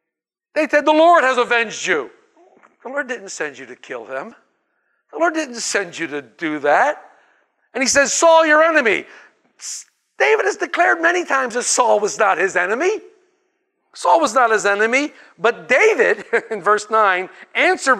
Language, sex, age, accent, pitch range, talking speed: English, male, 50-69, American, 205-320 Hz, 170 wpm